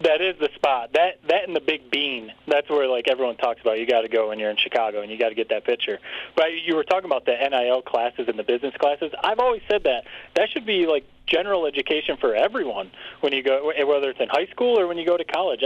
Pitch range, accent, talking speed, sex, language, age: 120-165 Hz, American, 265 wpm, male, English, 30-49